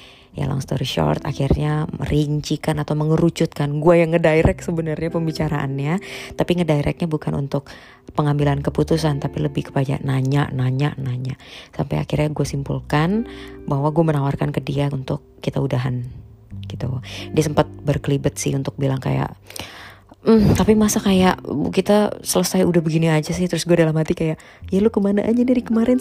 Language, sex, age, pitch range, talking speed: Indonesian, female, 20-39, 140-175 Hz, 150 wpm